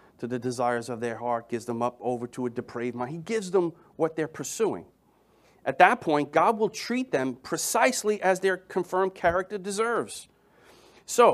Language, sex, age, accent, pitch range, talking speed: English, male, 40-59, American, 125-185 Hz, 180 wpm